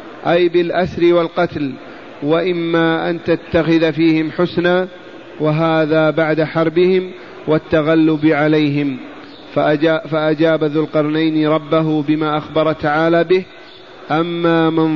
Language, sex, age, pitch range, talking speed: Arabic, male, 40-59, 150-165 Hz, 90 wpm